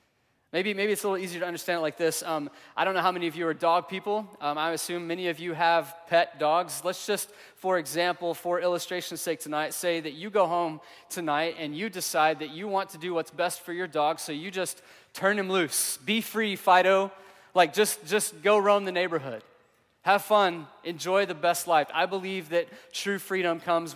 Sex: male